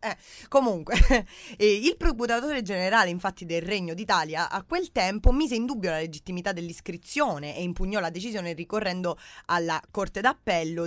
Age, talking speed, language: 20-39, 145 wpm, Italian